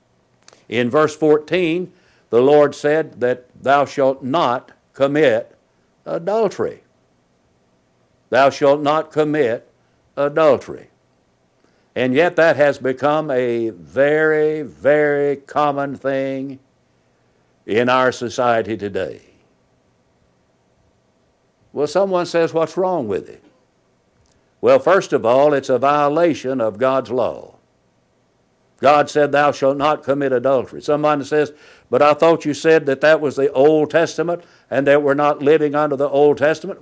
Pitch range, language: 135-160 Hz, English